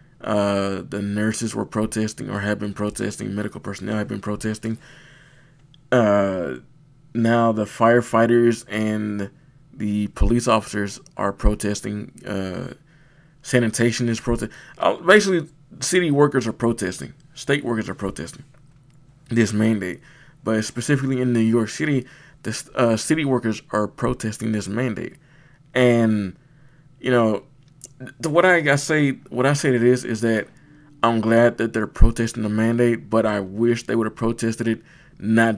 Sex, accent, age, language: male, American, 20-39, English